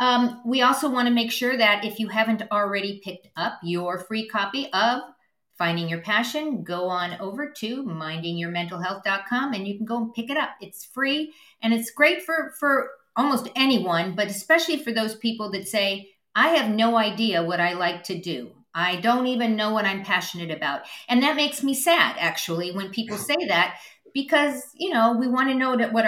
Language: English